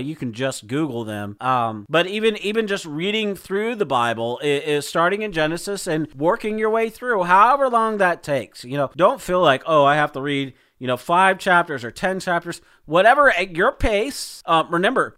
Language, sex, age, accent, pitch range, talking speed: English, male, 40-59, American, 145-195 Hz, 200 wpm